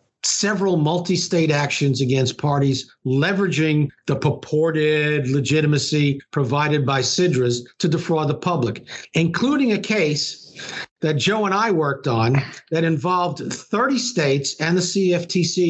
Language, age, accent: English, 50-69, American